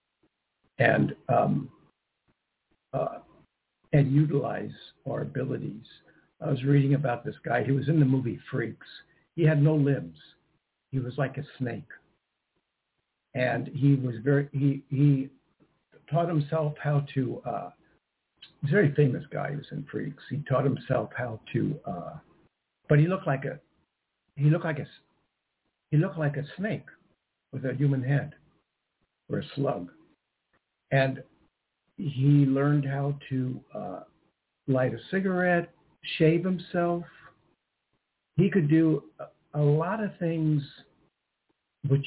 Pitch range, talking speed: 135-150 Hz, 135 wpm